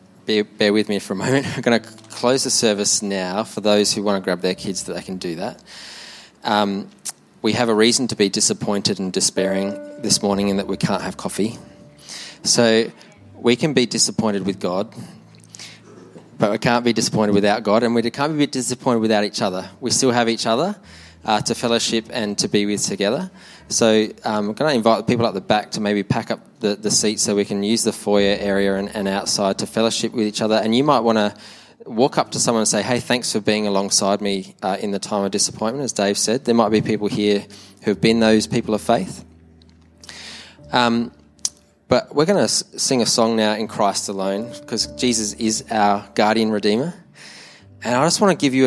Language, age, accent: English, 20-39, Australian